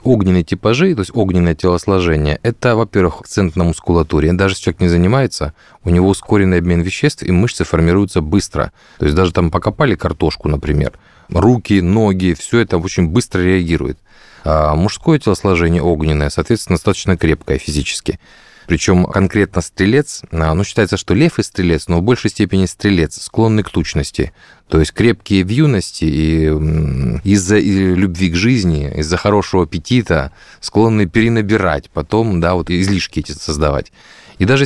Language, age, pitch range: Russian, 30-49, 80-105 Hz